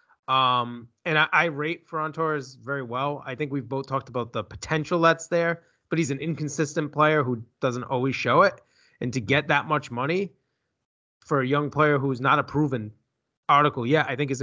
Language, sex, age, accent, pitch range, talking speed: English, male, 20-39, American, 115-155 Hz, 205 wpm